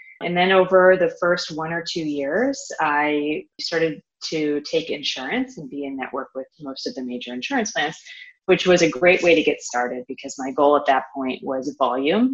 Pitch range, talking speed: 135-180 Hz, 200 wpm